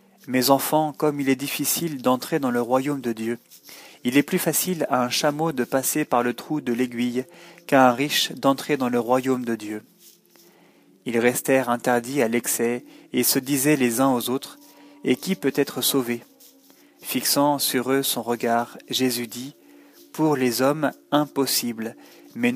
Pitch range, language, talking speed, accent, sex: 125-150 Hz, French, 170 wpm, French, male